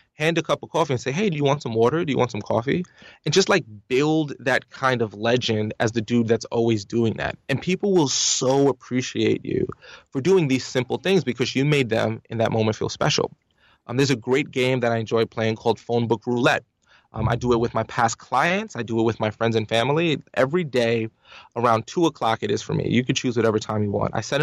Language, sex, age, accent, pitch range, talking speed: English, male, 20-39, American, 115-150 Hz, 245 wpm